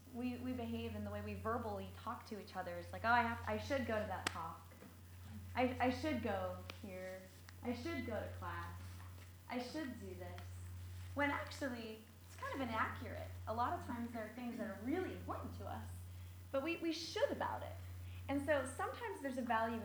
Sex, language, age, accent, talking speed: female, English, 20-39, American, 205 wpm